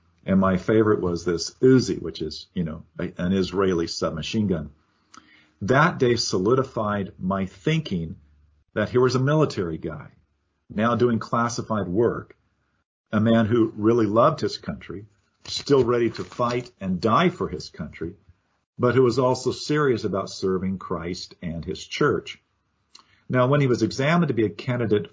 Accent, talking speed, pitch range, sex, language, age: American, 155 wpm, 90-120 Hz, male, English, 50-69